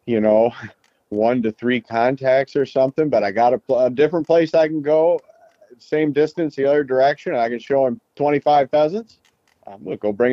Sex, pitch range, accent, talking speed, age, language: male, 110-145 Hz, American, 210 wpm, 50-69, English